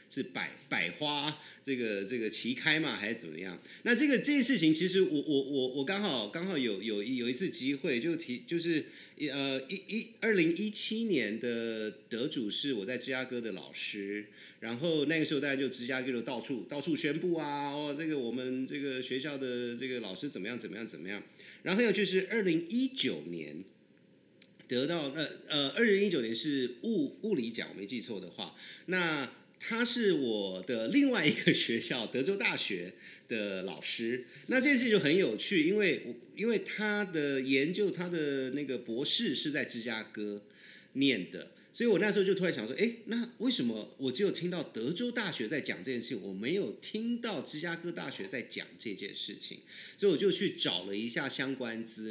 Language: Chinese